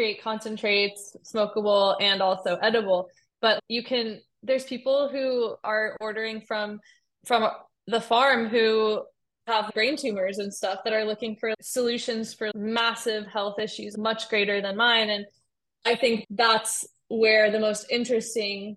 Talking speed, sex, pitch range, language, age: 145 wpm, female, 210-240 Hz, English, 20-39